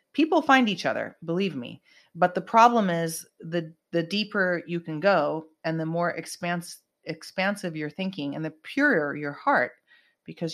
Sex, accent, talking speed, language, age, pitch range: female, American, 165 wpm, English, 30-49, 150-180 Hz